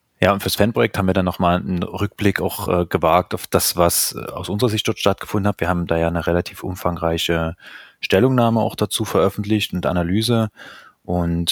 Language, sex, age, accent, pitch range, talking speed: German, male, 30-49, German, 85-100 Hz, 190 wpm